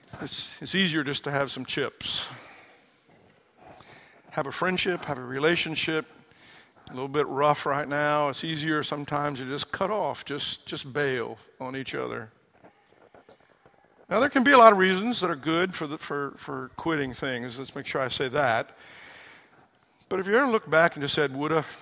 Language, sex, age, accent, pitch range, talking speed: English, male, 50-69, American, 140-165 Hz, 180 wpm